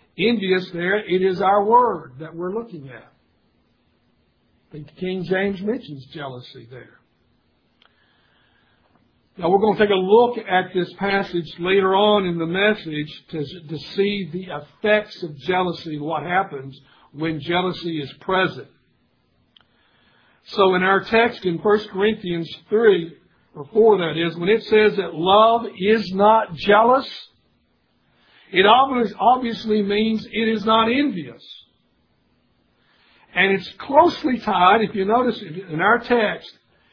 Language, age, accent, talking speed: English, 60-79, American, 135 wpm